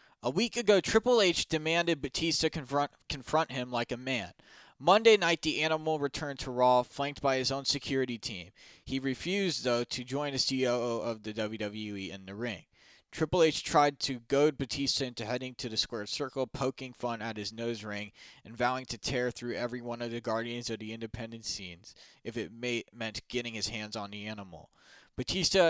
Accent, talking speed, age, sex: American, 190 wpm, 20-39, male